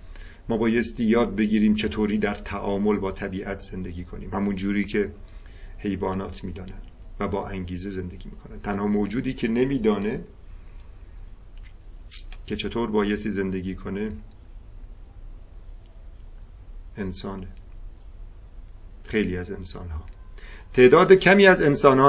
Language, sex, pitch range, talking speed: Persian, male, 95-115 Hz, 110 wpm